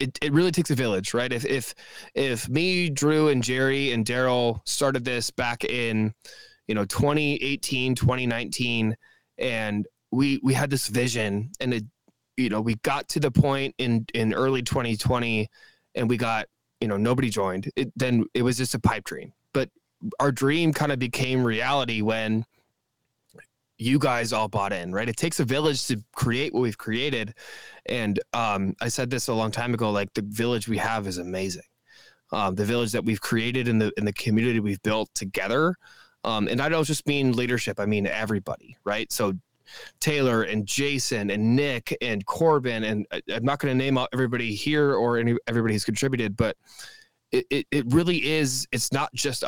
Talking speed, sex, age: 190 wpm, male, 20-39